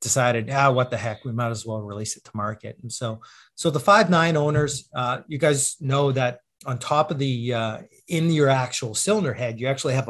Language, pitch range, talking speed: English, 120-150 Hz, 220 wpm